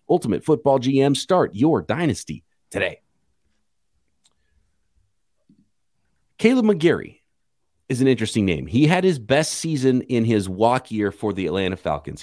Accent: American